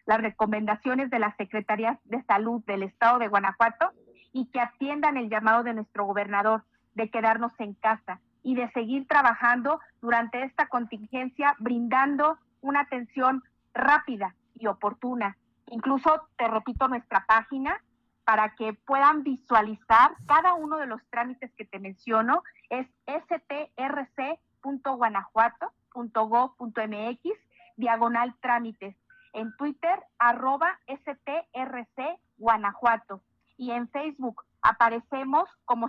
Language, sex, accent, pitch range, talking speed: Spanish, female, Mexican, 225-275 Hz, 110 wpm